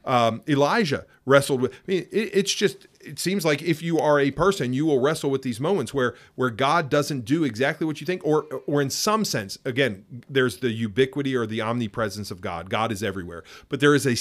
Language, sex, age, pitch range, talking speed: English, male, 40-59, 115-145 Hz, 225 wpm